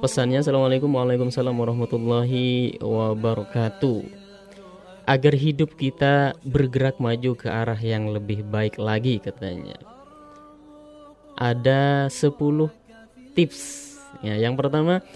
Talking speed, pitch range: 85 wpm, 120-160 Hz